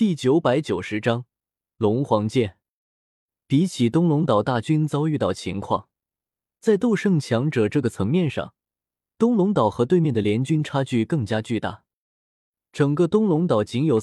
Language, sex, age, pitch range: Chinese, male, 20-39, 110-170 Hz